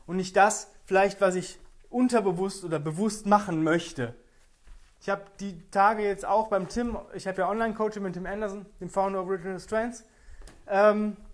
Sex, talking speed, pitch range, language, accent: male, 170 wpm, 165-210 Hz, German, German